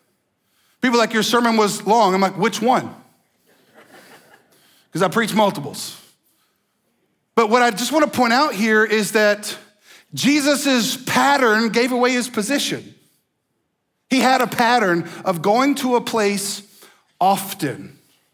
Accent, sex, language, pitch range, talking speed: American, male, English, 195-255 Hz, 135 wpm